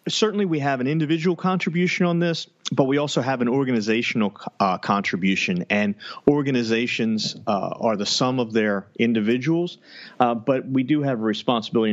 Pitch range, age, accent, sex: 100-130 Hz, 40-59, American, male